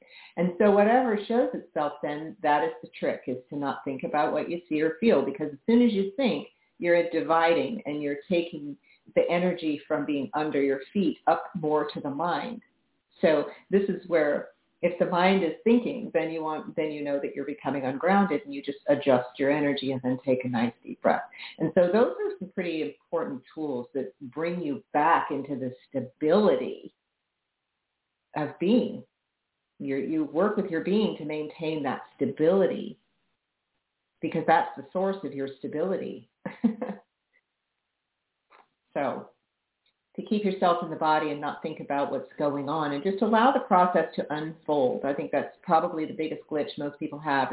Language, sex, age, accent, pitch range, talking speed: English, female, 50-69, American, 145-185 Hz, 175 wpm